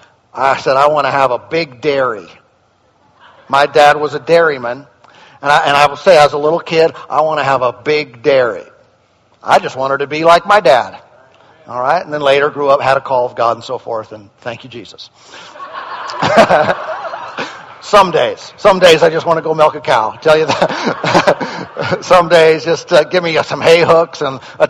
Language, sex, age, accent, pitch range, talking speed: English, male, 50-69, American, 150-230 Hz, 205 wpm